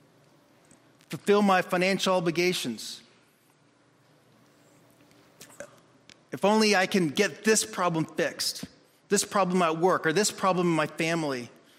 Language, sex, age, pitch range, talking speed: English, male, 30-49, 145-180 Hz, 110 wpm